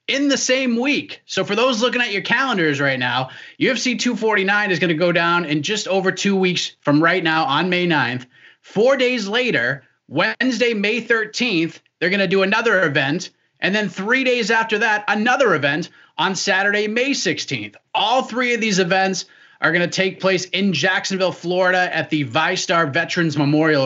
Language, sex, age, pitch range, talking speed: English, male, 30-49, 155-200 Hz, 185 wpm